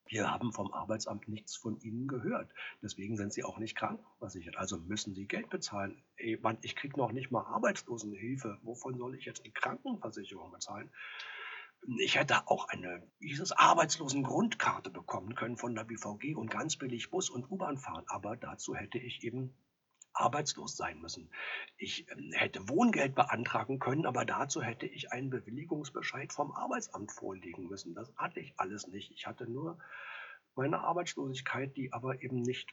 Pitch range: 110-140 Hz